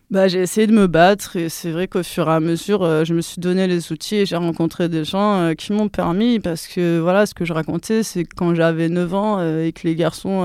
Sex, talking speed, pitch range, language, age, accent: female, 275 wpm, 165-190 Hz, French, 20-39, French